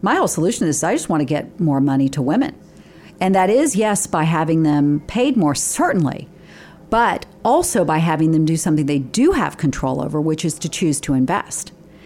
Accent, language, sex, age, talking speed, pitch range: American, English, female, 40-59, 200 wpm, 150-190 Hz